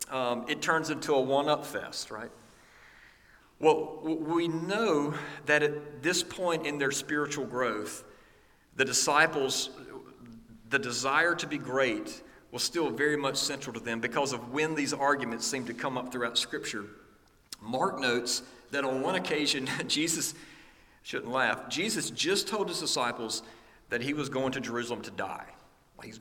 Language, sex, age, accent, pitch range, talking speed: English, male, 40-59, American, 125-160 Hz, 155 wpm